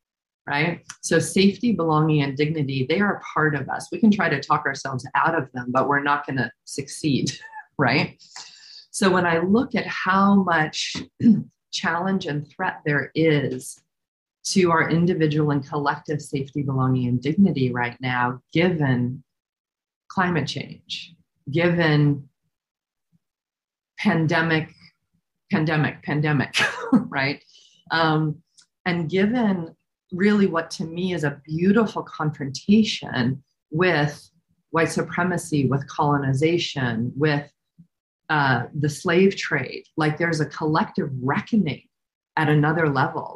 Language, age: English, 40-59